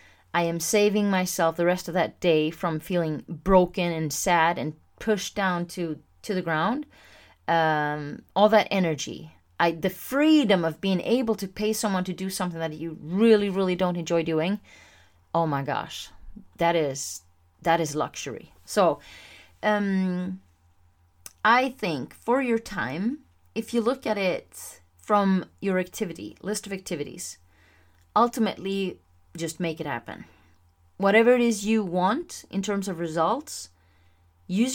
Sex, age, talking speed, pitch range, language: female, 30-49, 145 wpm, 150-195 Hz, English